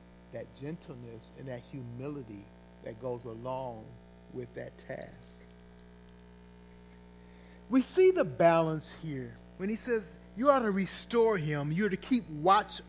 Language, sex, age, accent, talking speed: English, male, 40-59, American, 130 wpm